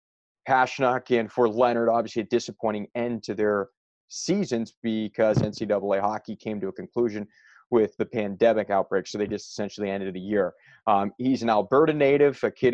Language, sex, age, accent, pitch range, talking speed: English, male, 30-49, American, 105-125 Hz, 170 wpm